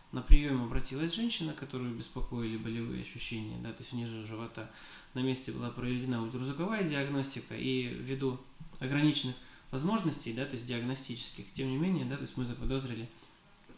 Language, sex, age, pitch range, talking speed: Russian, male, 20-39, 115-140 Hz, 150 wpm